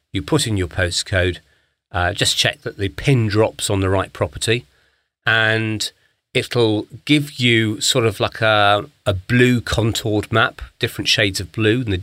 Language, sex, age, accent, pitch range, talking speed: English, male, 40-59, British, 95-125 Hz, 170 wpm